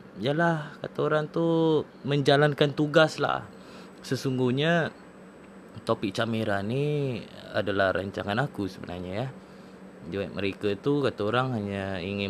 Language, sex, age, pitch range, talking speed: Malay, male, 20-39, 100-140 Hz, 110 wpm